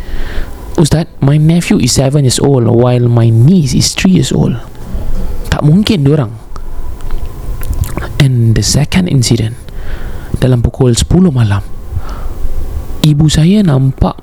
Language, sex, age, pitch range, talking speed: Malay, male, 20-39, 110-155 Hz, 120 wpm